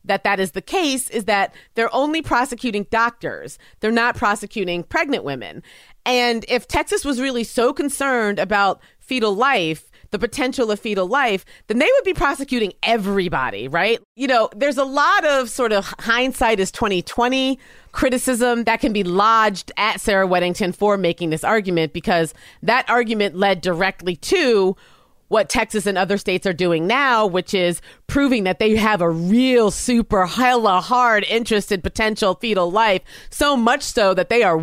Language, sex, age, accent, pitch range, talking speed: English, female, 30-49, American, 195-255 Hz, 170 wpm